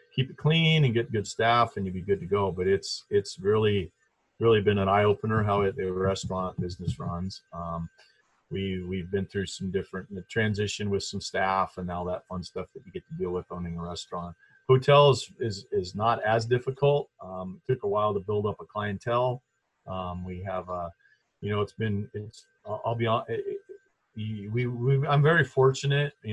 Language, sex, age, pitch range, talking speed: English, male, 40-59, 95-120 Hz, 200 wpm